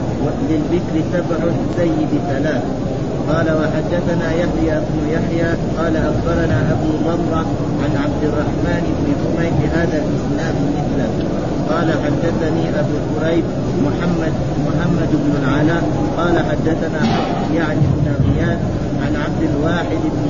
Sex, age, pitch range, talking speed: male, 30-49, 150-165 Hz, 110 wpm